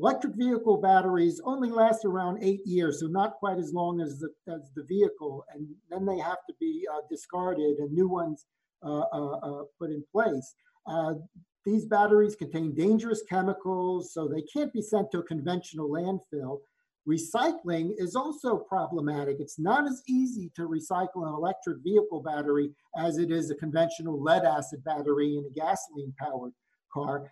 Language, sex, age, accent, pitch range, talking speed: English, male, 50-69, American, 160-215 Hz, 165 wpm